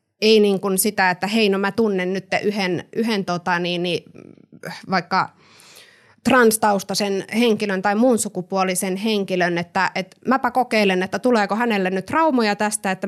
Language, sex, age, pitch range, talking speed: Finnish, female, 20-39, 175-210 Hz, 140 wpm